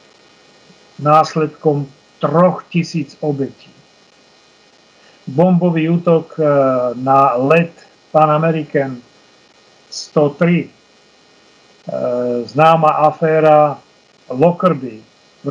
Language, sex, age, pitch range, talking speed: Slovak, male, 50-69, 150-175 Hz, 50 wpm